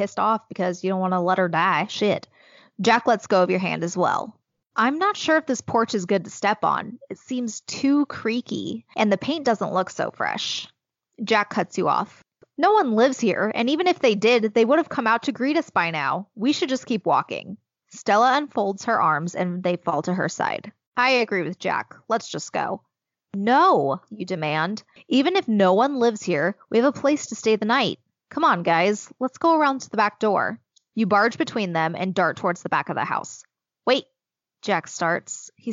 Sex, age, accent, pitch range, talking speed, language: female, 20-39, American, 190-255 Hz, 215 wpm, English